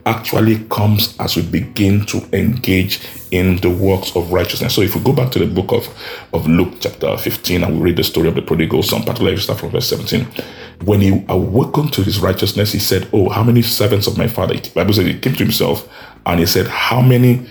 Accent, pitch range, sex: Nigerian, 95-115 Hz, male